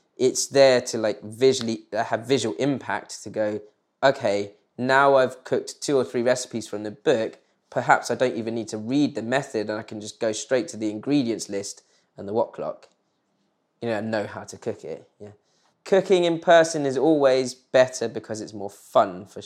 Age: 20-39